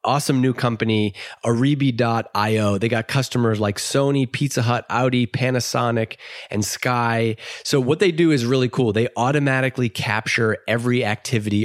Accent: American